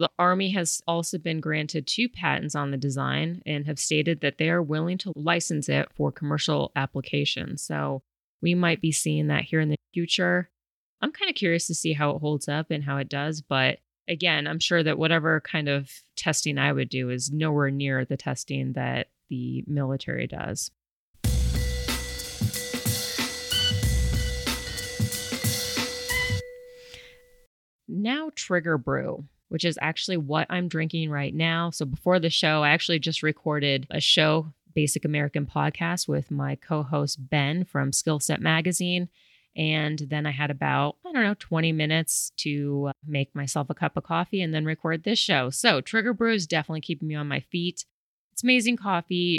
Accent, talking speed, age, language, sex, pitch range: American, 165 wpm, 30-49, English, female, 140-170 Hz